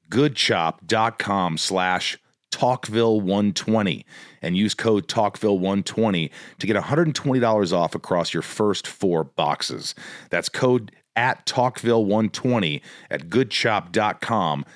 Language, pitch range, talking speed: English, 90-125 Hz, 90 wpm